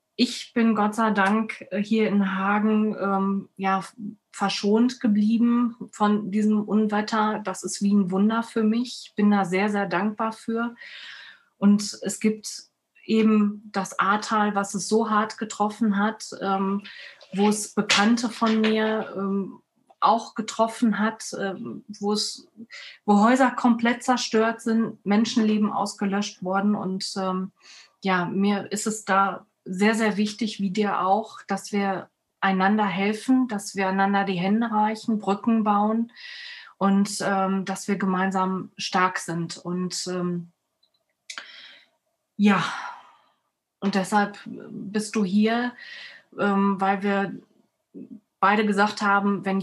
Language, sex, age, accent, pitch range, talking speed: German, female, 30-49, German, 195-225 Hz, 130 wpm